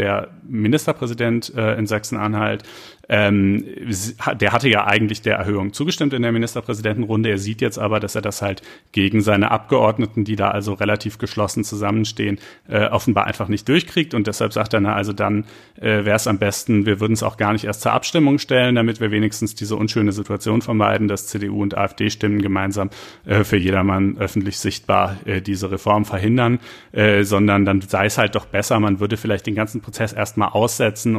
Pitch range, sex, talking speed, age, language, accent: 100-115 Hz, male, 175 wpm, 40-59, German, German